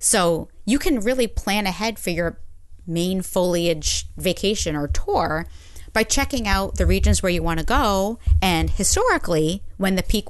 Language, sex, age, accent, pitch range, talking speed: English, female, 30-49, American, 155-215 Hz, 165 wpm